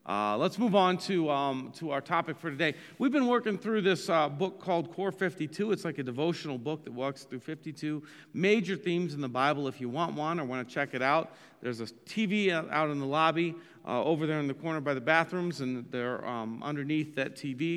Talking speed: 225 wpm